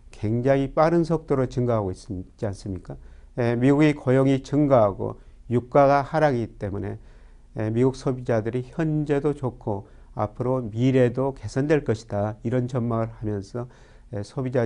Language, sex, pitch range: Korean, male, 110-135 Hz